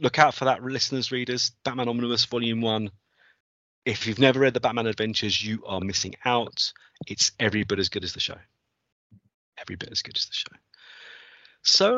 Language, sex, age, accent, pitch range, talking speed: English, male, 30-49, British, 105-145 Hz, 185 wpm